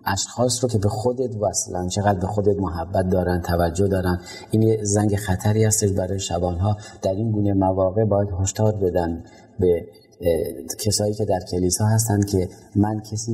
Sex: male